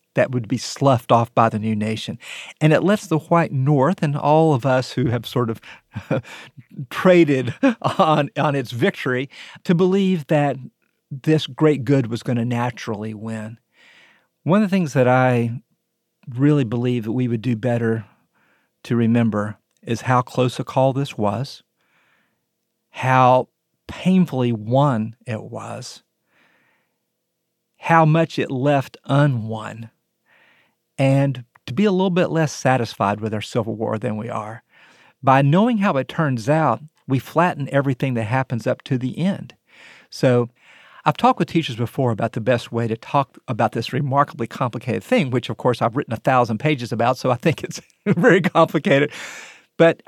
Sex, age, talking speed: male, 50-69, 160 wpm